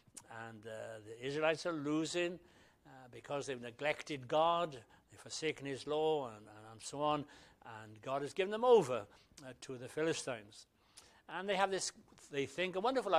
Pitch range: 125-175 Hz